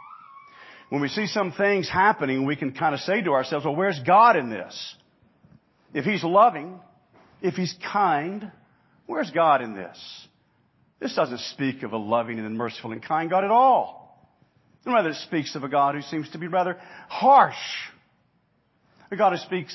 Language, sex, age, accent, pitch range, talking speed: English, male, 40-59, American, 135-210 Hz, 175 wpm